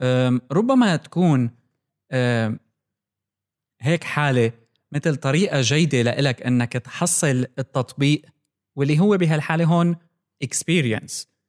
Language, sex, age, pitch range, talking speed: Arabic, male, 20-39, 120-150 Hz, 85 wpm